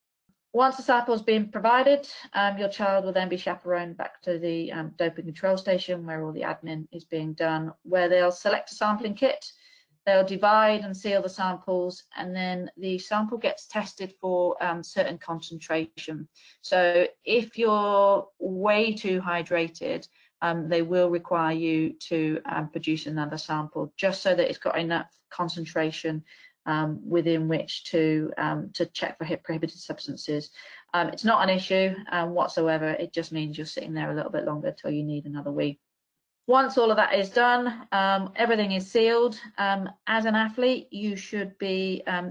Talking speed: 175 wpm